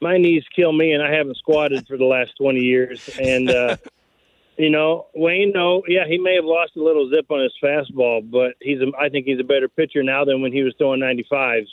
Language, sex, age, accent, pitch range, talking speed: English, male, 40-59, American, 135-160 Hz, 240 wpm